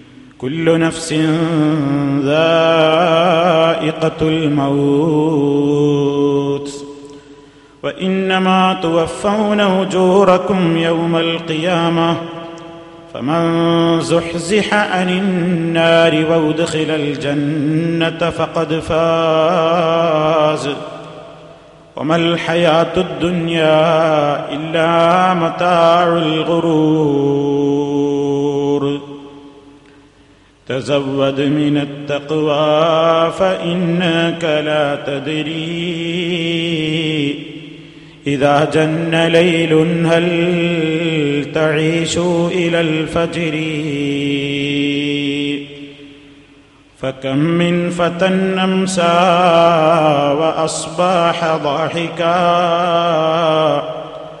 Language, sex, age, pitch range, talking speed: Malayalam, male, 30-49, 145-170 Hz, 45 wpm